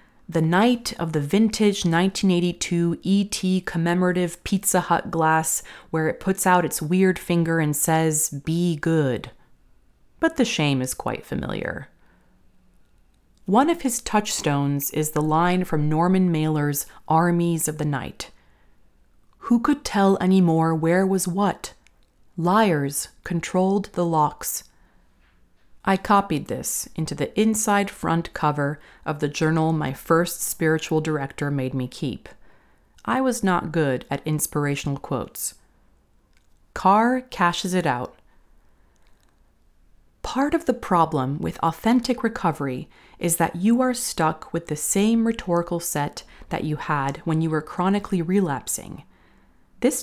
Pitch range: 150-195 Hz